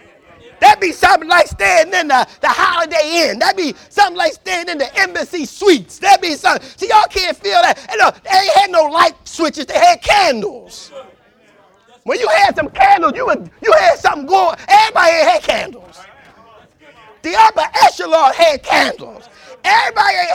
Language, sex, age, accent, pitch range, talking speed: English, male, 30-49, American, 305-375 Hz, 175 wpm